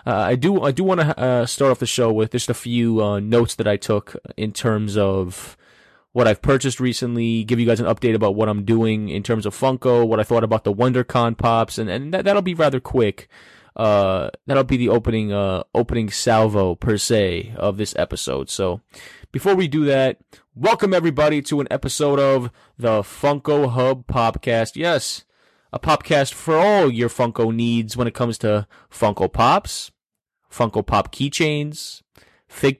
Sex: male